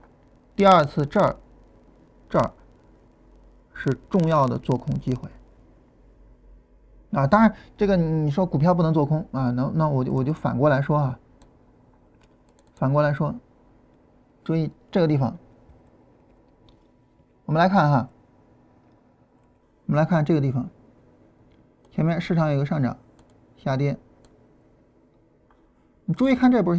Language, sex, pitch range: Chinese, male, 135-195 Hz